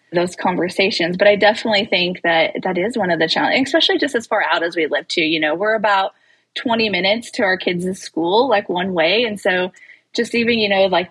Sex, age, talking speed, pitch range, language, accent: female, 20-39, 225 wpm, 180-235 Hz, English, American